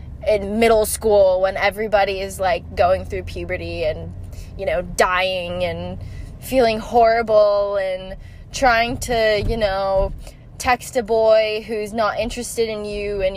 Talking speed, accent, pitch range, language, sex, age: 140 wpm, American, 175-230 Hz, English, female, 10-29